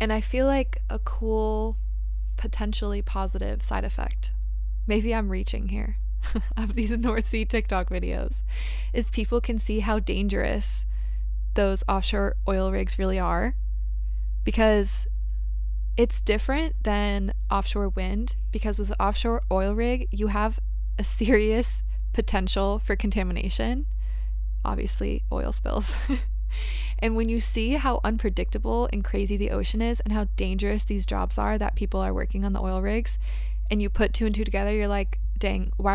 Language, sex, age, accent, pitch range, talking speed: English, female, 20-39, American, 180-220 Hz, 150 wpm